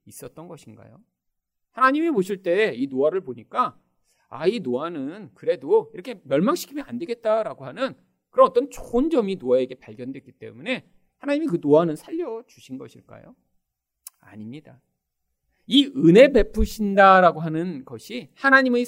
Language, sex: Korean, male